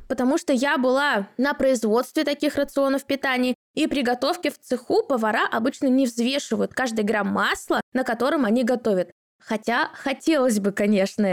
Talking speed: 150 wpm